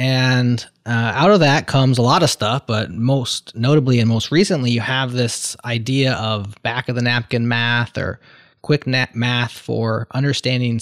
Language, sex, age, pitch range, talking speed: English, male, 20-39, 115-130 Hz, 170 wpm